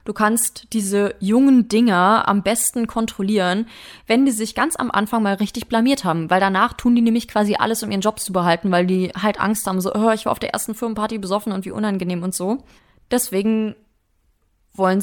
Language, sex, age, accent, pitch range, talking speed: German, female, 20-39, German, 190-230 Hz, 200 wpm